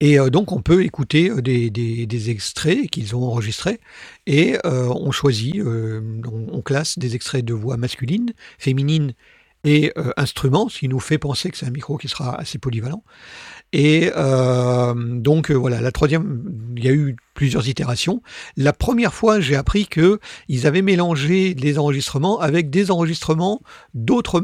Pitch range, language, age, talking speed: 130-170 Hz, French, 50-69, 155 wpm